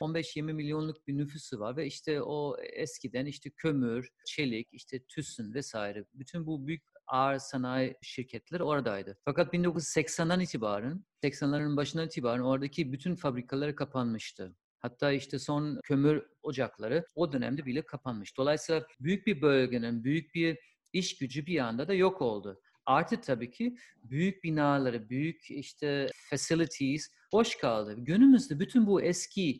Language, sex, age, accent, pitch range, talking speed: Turkish, male, 40-59, native, 130-170 Hz, 140 wpm